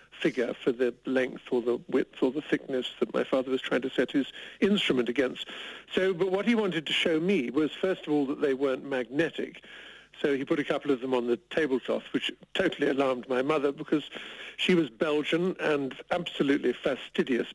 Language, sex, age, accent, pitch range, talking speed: English, male, 60-79, British, 130-170 Hz, 200 wpm